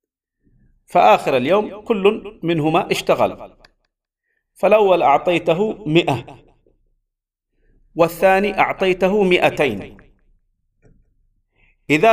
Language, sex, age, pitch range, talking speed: Arabic, male, 50-69, 140-195 Hz, 60 wpm